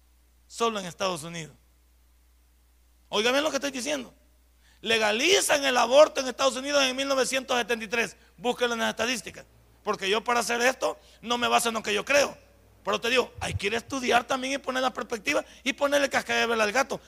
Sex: male